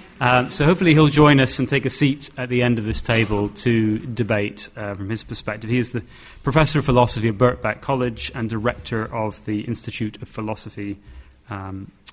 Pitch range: 105-130 Hz